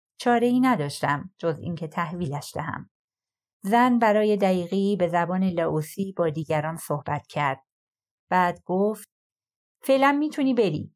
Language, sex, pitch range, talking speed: Persian, female, 160-205 Hz, 120 wpm